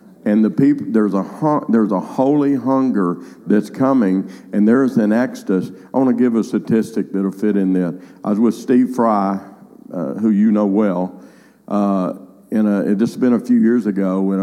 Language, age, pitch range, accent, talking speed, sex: English, 50-69, 100-145 Hz, American, 195 wpm, male